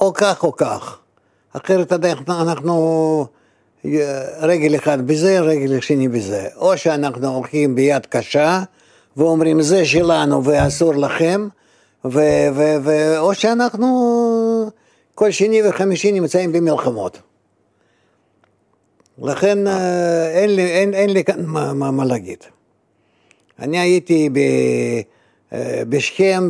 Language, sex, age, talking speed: Hebrew, male, 60-79, 110 wpm